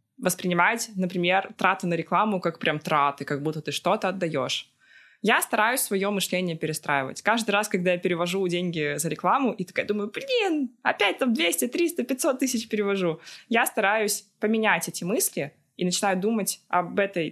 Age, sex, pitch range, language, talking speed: 20-39, female, 175-215 Hz, Russian, 165 wpm